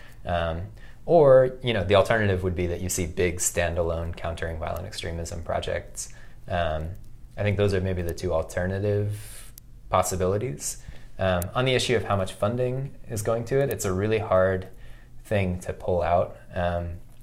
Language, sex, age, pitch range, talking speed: English, male, 20-39, 85-115 Hz, 165 wpm